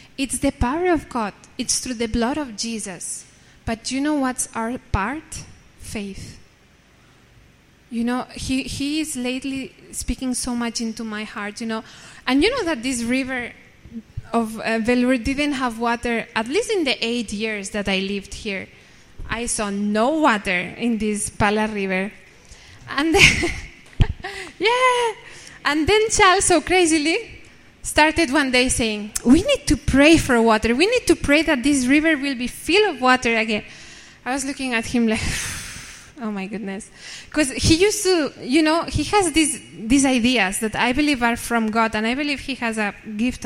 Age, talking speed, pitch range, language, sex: 20-39, 175 wpm, 220-290 Hz, English, female